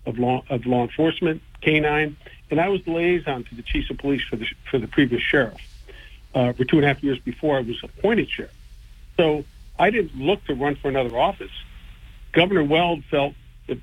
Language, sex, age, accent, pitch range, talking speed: English, male, 50-69, American, 125-155 Hz, 205 wpm